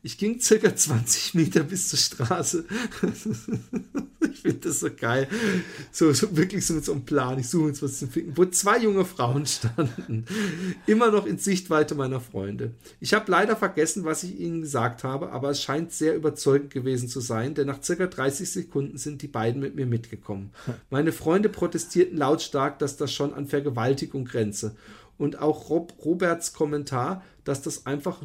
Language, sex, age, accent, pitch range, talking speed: German, male, 50-69, German, 135-175 Hz, 180 wpm